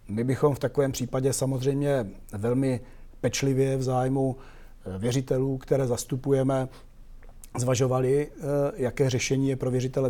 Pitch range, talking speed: 120-135 Hz, 115 wpm